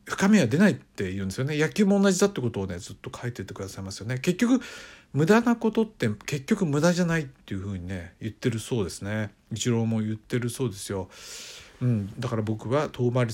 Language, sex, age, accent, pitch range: Japanese, male, 50-69, native, 100-145 Hz